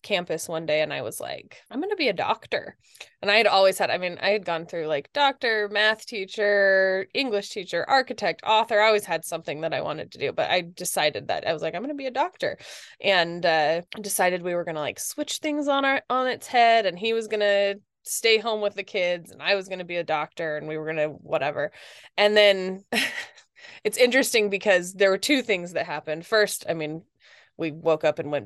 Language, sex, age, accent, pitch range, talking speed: English, female, 20-39, American, 170-225 Hz, 225 wpm